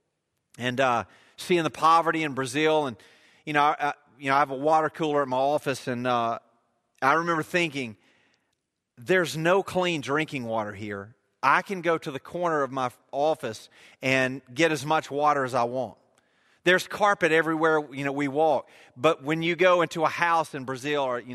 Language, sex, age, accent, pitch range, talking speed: English, male, 40-59, American, 140-195 Hz, 185 wpm